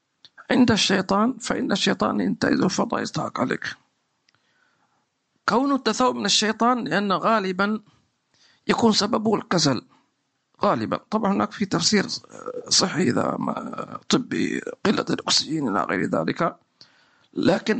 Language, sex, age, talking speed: English, male, 50-69, 100 wpm